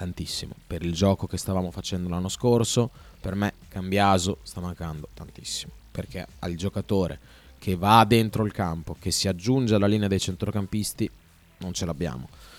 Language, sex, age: Italian, male, 20-39